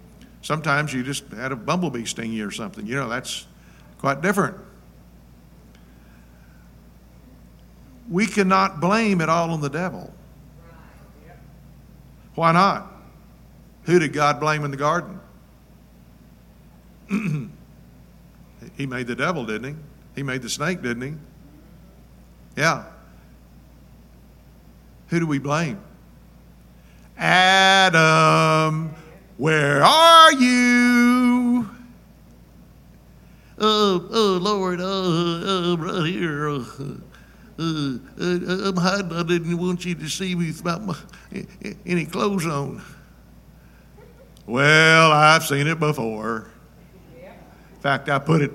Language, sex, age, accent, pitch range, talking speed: English, male, 60-79, American, 135-185 Hz, 110 wpm